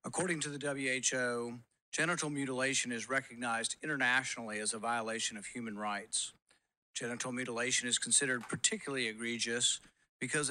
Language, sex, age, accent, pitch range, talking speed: English, male, 50-69, American, 120-140 Hz, 125 wpm